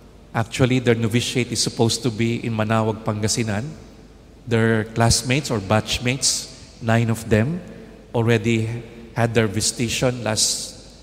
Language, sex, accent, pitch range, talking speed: Indonesian, male, Filipino, 110-125 Hz, 120 wpm